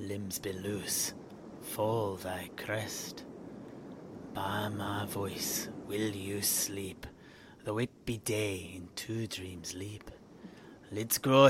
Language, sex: English, male